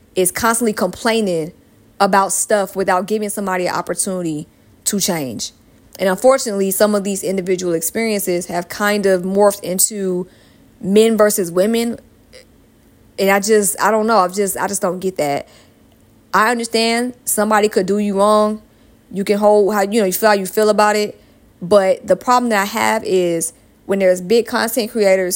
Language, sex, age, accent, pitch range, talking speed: English, female, 20-39, American, 185-215 Hz, 170 wpm